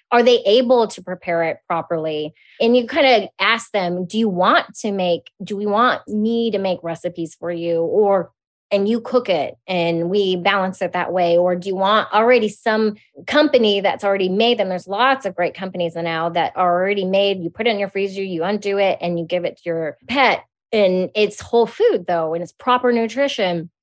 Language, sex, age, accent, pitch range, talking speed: English, female, 20-39, American, 175-220 Hz, 210 wpm